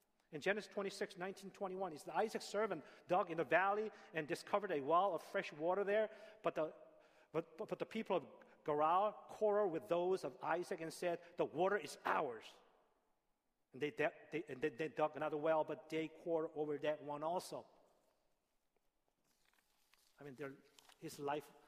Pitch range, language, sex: 145-180 Hz, Korean, male